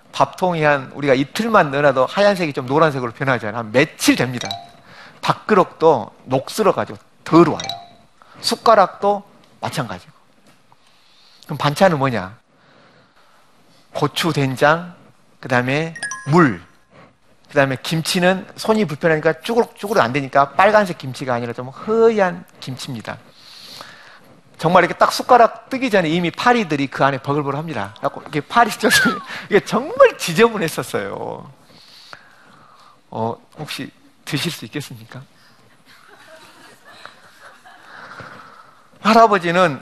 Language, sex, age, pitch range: Korean, male, 40-59, 125-185 Hz